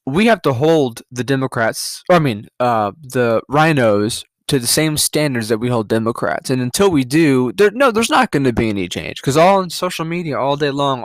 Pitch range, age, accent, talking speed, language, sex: 125-160 Hz, 20-39, American, 225 wpm, English, male